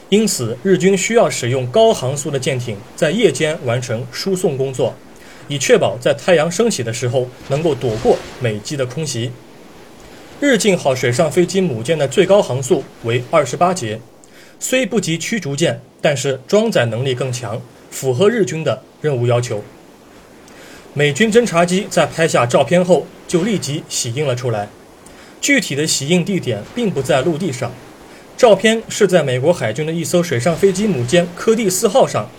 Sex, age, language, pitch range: male, 30-49, Chinese, 130-190 Hz